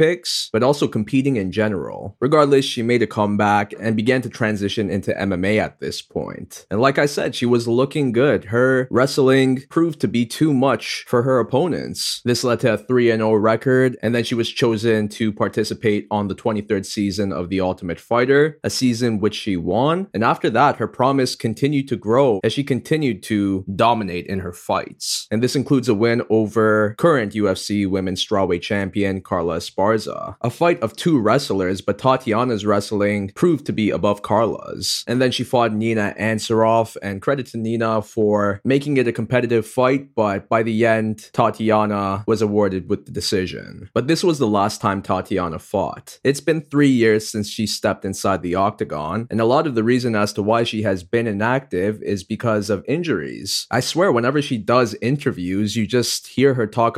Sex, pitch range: male, 105-125 Hz